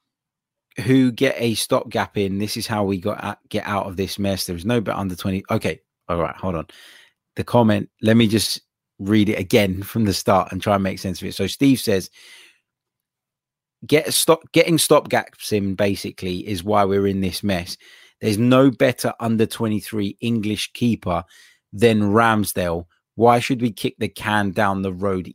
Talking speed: 190 wpm